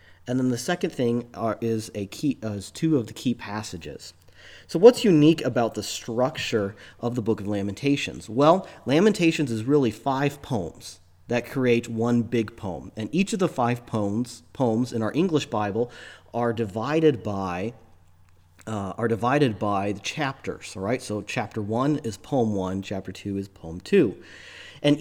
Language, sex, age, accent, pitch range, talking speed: English, male, 30-49, American, 105-140 Hz, 175 wpm